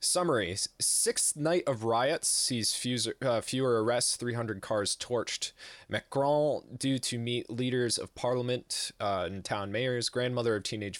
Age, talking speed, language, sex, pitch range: 20-39, 140 wpm, English, male, 105-130 Hz